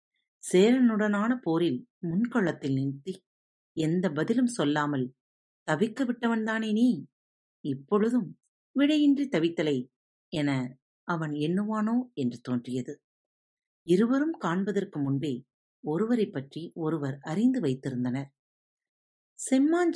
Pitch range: 135-220 Hz